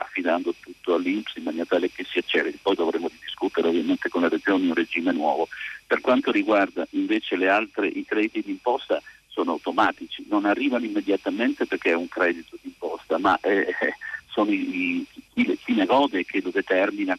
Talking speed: 165 wpm